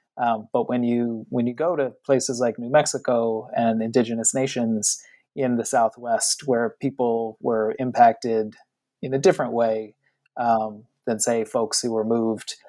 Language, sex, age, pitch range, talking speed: English, male, 30-49, 115-140 Hz, 155 wpm